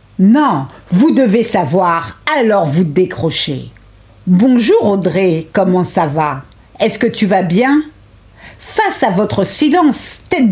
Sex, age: female, 50-69